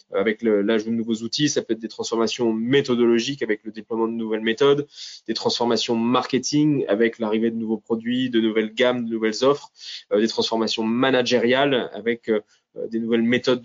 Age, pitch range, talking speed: 20-39, 110-130 Hz, 175 wpm